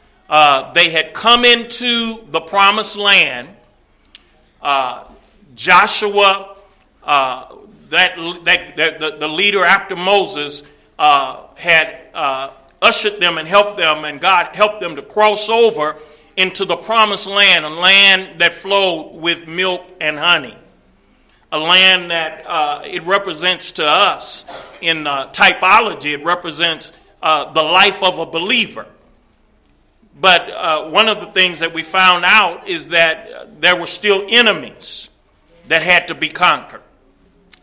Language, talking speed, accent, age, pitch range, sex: English, 135 wpm, American, 40-59, 155-195 Hz, male